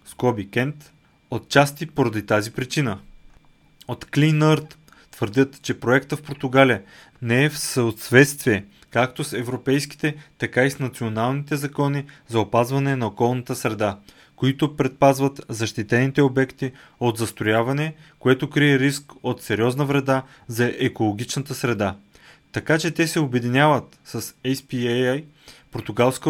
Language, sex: Bulgarian, male